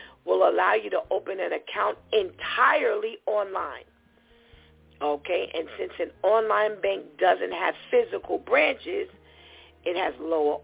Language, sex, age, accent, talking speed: English, female, 50-69, American, 125 wpm